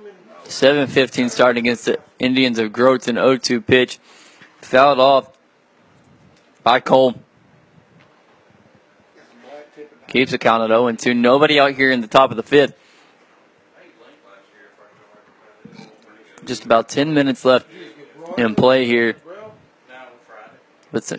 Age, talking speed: 20-39, 115 wpm